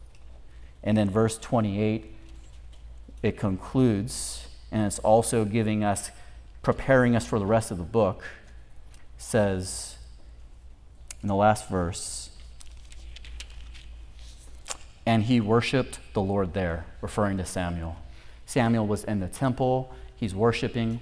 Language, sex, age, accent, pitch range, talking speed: English, male, 30-49, American, 80-115 Hz, 115 wpm